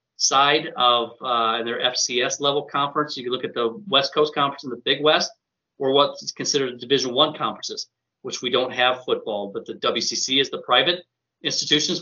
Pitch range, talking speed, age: 120-145 Hz, 185 wpm, 30-49